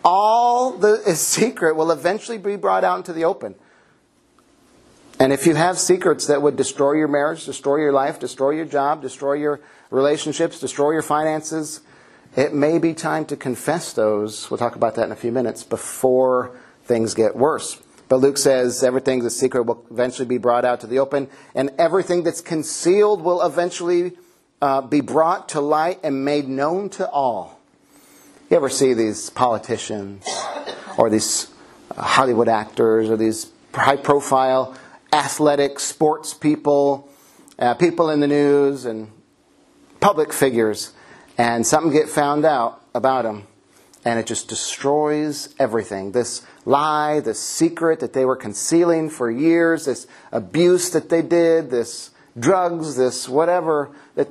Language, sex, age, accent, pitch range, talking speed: English, male, 40-59, American, 125-165 Hz, 150 wpm